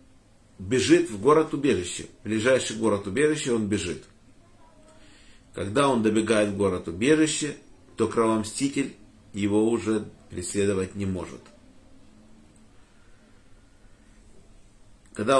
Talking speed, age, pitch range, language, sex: 90 wpm, 50-69, 105-140 Hz, Russian, male